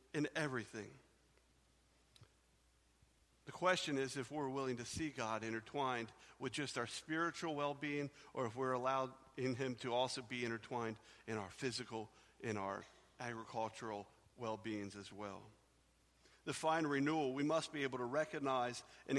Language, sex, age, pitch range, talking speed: English, male, 50-69, 125-190 Hz, 145 wpm